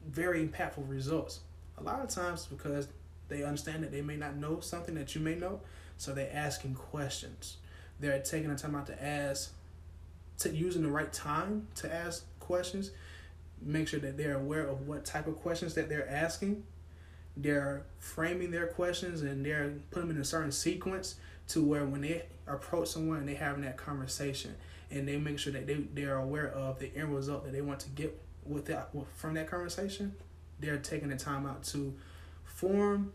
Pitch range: 95-160 Hz